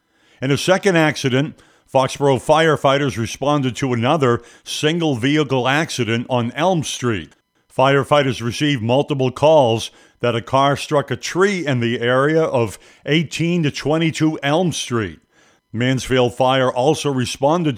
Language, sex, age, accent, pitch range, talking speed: English, male, 50-69, American, 120-150 Hz, 120 wpm